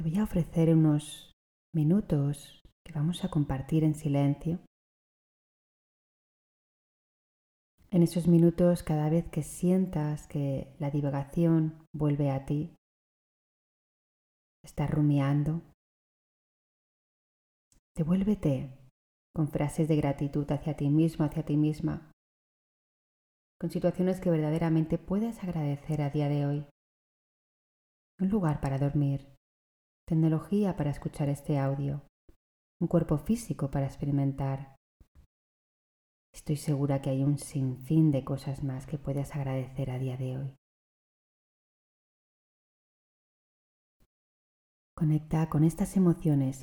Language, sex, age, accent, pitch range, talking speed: Spanish, female, 30-49, Spanish, 140-160 Hz, 105 wpm